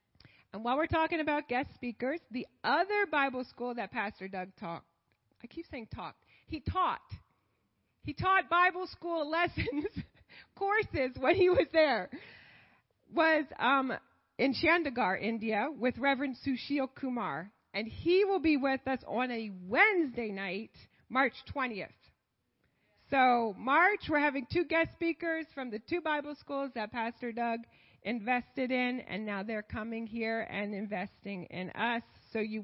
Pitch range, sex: 205-280 Hz, female